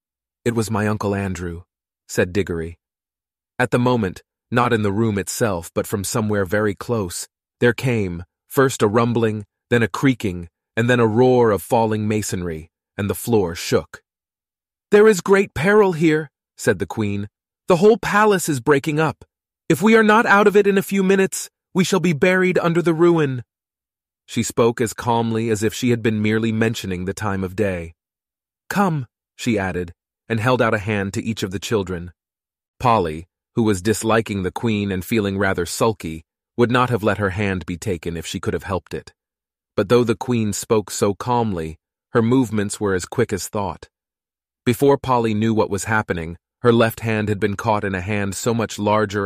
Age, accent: 30-49, American